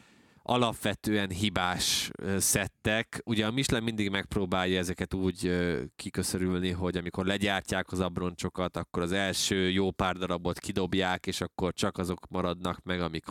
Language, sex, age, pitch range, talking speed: Hungarian, male, 20-39, 90-100 Hz, 135 wpm